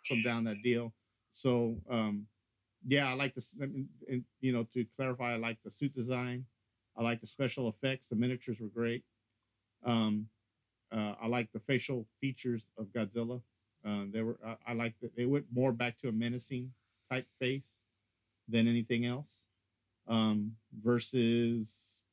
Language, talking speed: English, 155 wpm